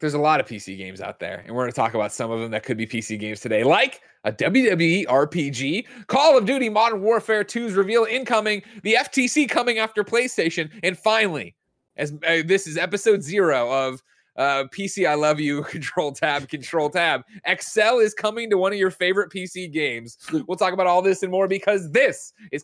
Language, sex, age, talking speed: English, male, 30-49, 205 wpm